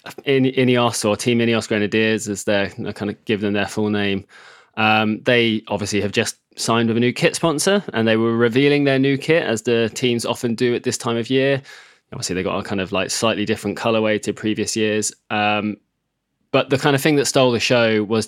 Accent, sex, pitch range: British, male, 105-135 Hz